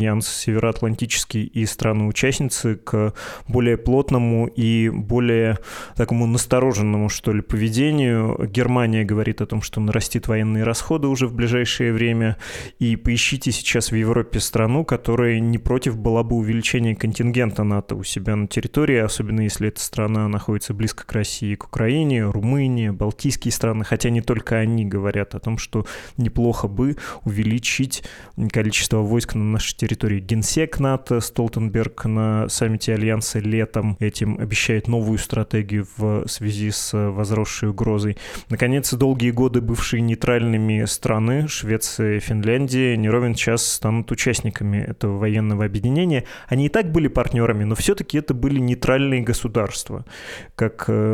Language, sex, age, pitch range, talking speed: Russian, male, 20-39, 110-125 Hz, 140 wpm